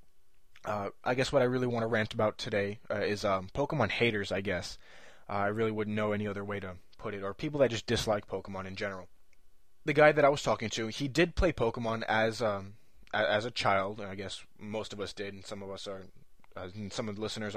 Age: 20-39